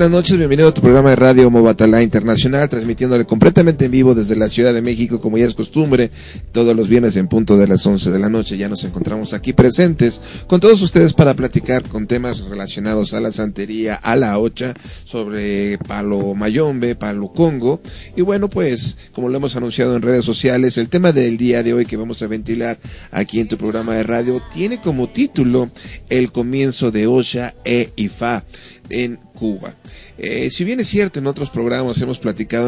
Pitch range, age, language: 105-125 Hz, 40-59, Spanish